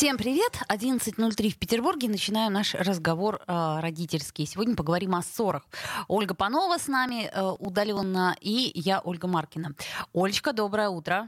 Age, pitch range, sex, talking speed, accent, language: 20-39, 175-230 Hz, female, 145 wpm, native, Russian